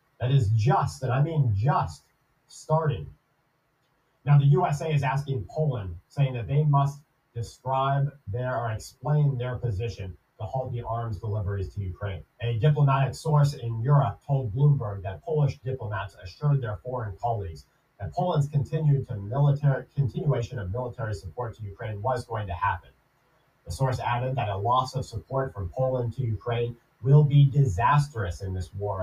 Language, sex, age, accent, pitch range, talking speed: English, male, 40-59, American, 105-145 Hz, 160 wpm